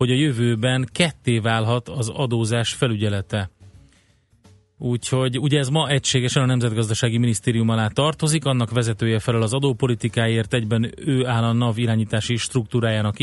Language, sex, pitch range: Hungarian, male, 110-125 Hz